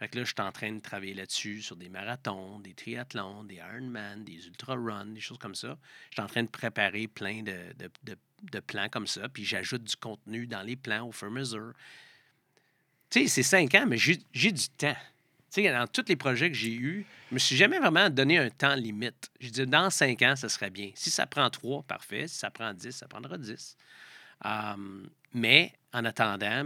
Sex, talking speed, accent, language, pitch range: male, 230 wpm, Canadian, French, 100-125 Hz